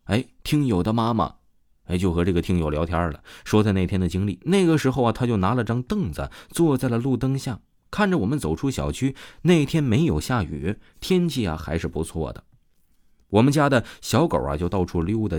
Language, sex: Chinese, male